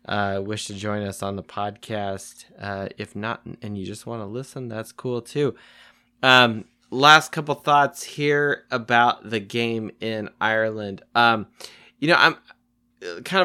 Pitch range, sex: 100-120 Hz, male